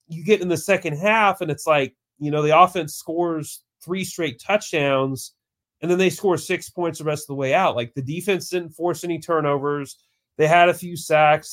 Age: 30-49